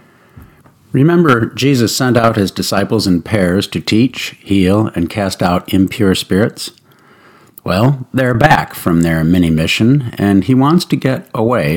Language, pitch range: English, 95-130 Hz